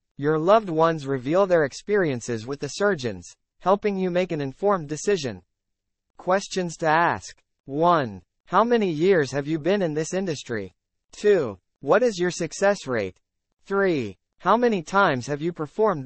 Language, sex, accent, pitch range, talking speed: English, male, American, 125-190 Hz, 155 wpm